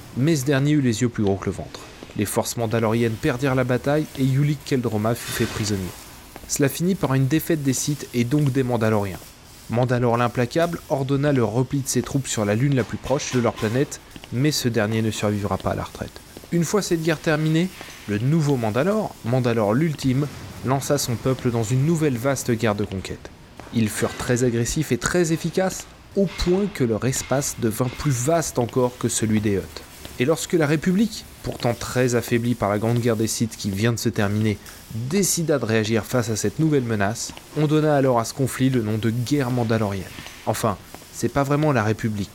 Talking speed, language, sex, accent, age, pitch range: 205 wpm, French, male, French, 20-39, 110-145 Hz